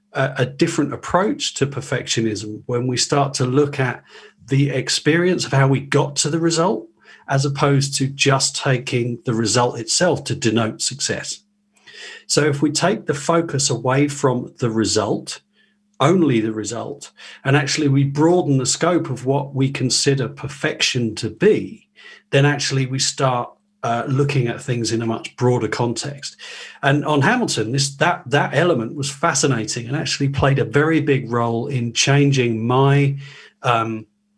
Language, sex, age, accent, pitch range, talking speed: English, male, 40-59, British, 120-150 Hz, 155 wpm